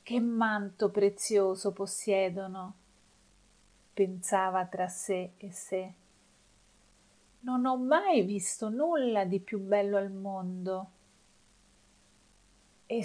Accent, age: native, 40-59